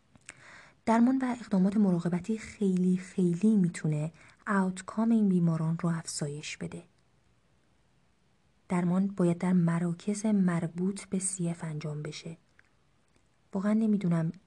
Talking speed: 100 wpm